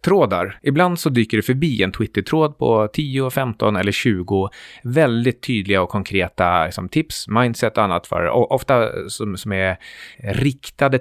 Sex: male